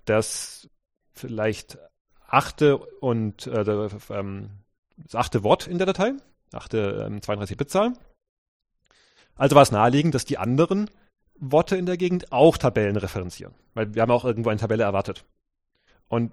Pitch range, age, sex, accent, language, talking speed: 110-155 Hz, 30-49, male, German, German, 135 wpm